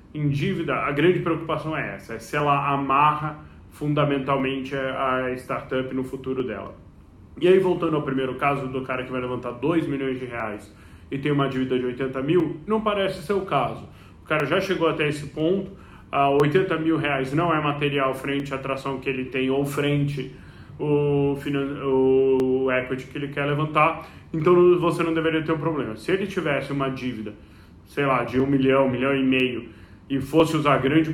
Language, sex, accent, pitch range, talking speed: Portuguese, male, Brazilian, 130-155 Hz, 185 wpm